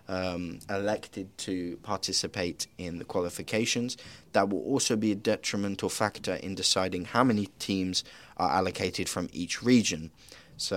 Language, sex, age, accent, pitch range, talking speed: English, male, 20-39, British, 95-120 Hz, 140 wpm